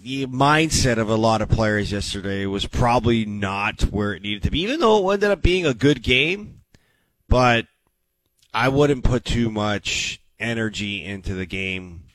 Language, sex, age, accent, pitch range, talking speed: English, male, 30-49, American, 95-120 Hz, 175 wpm